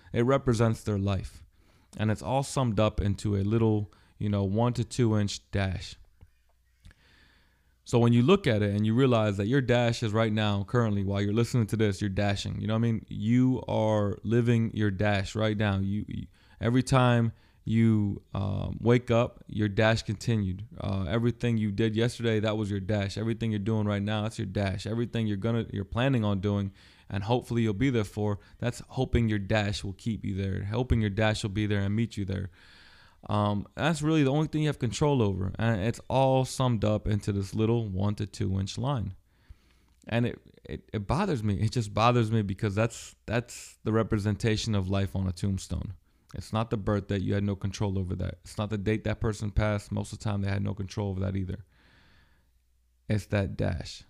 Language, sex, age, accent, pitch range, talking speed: English, male, 20-39, American, 100-115 Hz, 210 wpm